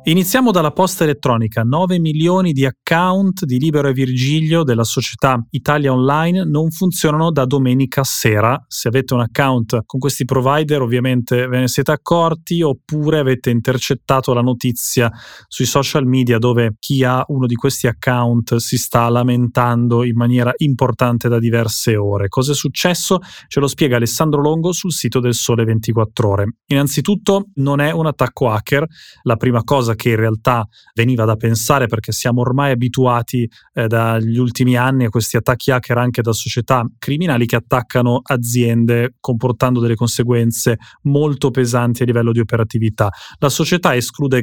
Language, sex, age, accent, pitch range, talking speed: Italian, male, 30-49, native, 120-145 Hz, 160 wpm